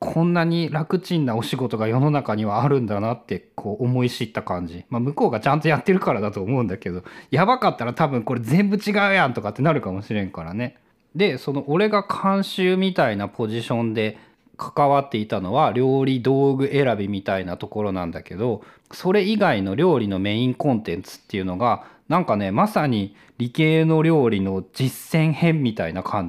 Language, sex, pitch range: Japanese, male, 115-185 Hz